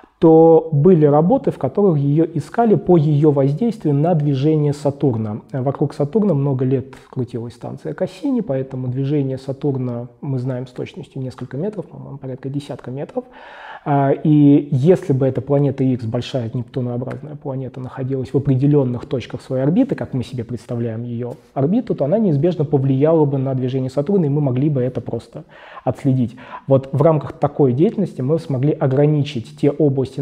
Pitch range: 125-155 Hz